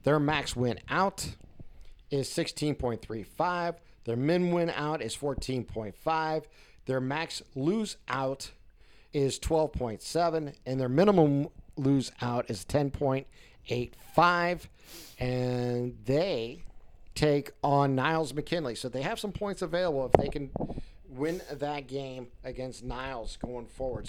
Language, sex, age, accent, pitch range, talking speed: English, male, 50-69, American, 125-155 Hz, 115 wpm